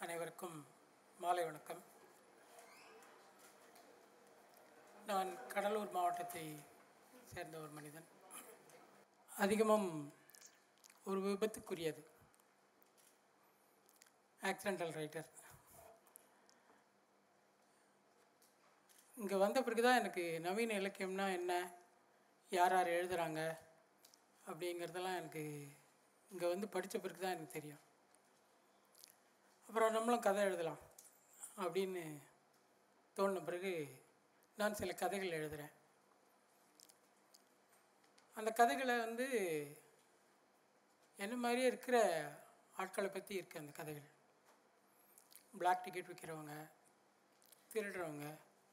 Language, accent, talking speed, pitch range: Tamil, native, 75 wpm, 160-200 Hz